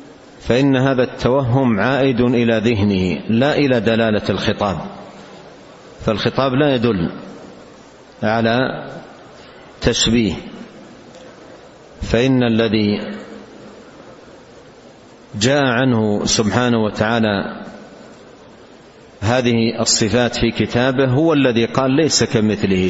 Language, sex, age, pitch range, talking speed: Arabic, male, 50-69, 105-125 Hz, 80 wpm